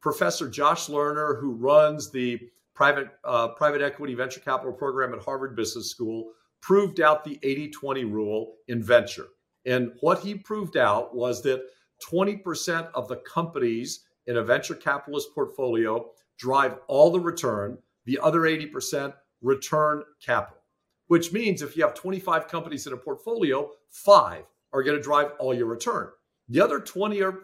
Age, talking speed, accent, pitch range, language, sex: 50-69, 155 wpm, American, 130-170 Hz, English, male